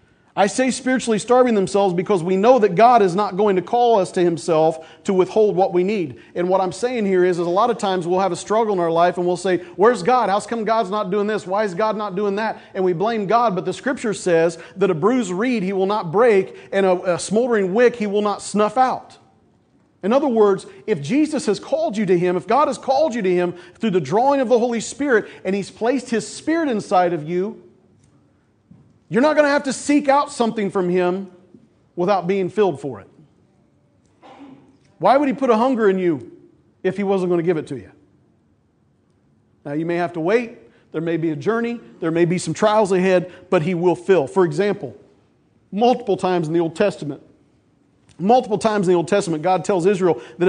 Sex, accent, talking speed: male, American, 225 wpm